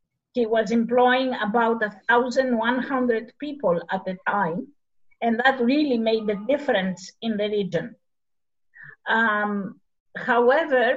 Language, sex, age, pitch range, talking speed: English, female, 50-69, 205-260 Hz, 110 wpm